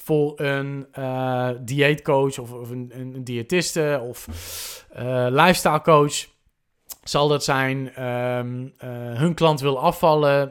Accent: Dutch